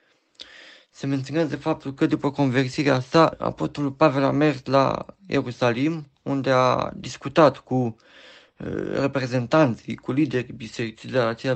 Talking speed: 130 wpm